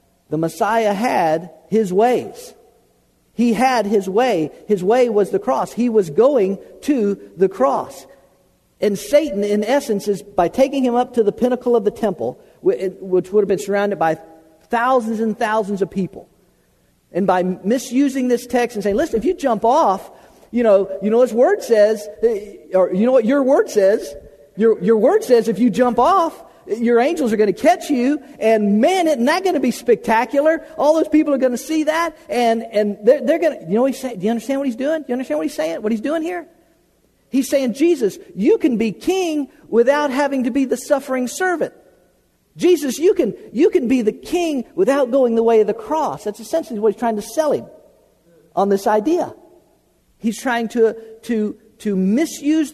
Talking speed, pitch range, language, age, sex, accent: 200 wpm, 210-285 Hz, English, 50-69, male, American